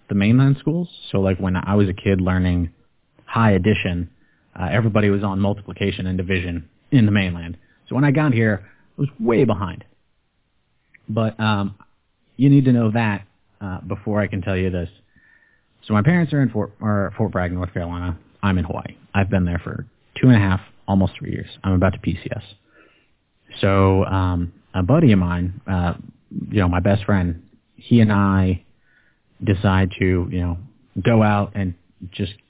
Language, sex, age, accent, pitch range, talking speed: English, male, 30-49, American, 95-110 Hz, 180 wpm